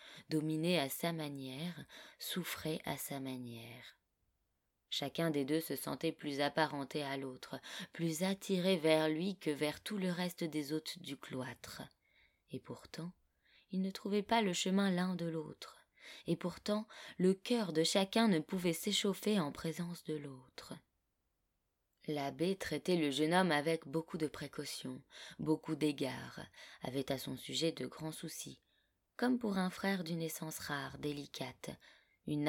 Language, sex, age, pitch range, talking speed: French, female, 20-39, 140-180 Hz, 150 wpm